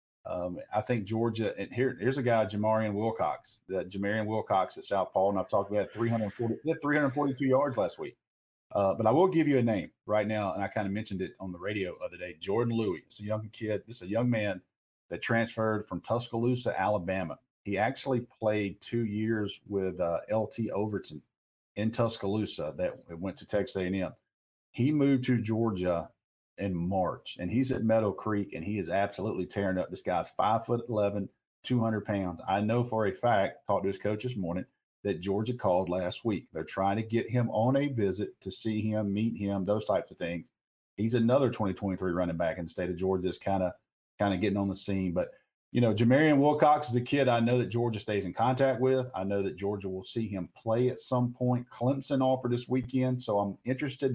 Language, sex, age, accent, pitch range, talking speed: English, male, 50-69, American, 100-120 Hz, 210 wpm